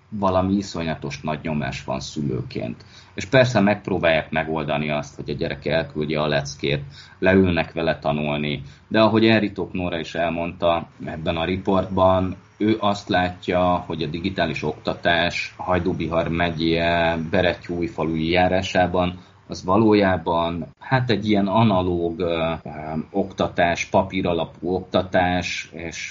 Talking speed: 115 wpm